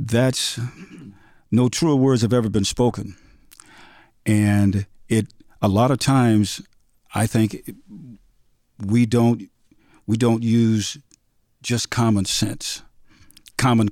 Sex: male